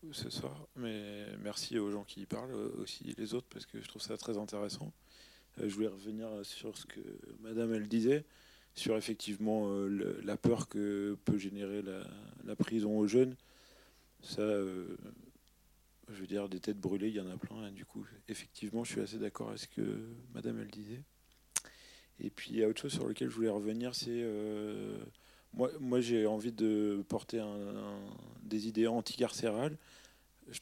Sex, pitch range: male, 100-115 Hz